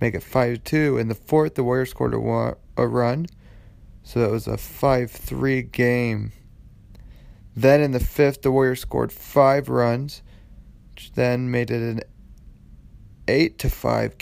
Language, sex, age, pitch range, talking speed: English, male, 30-49, 110-135 Hz, 140 wpm